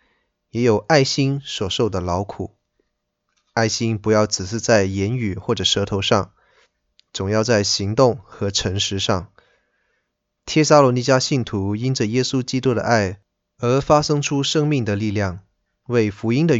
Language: Chinese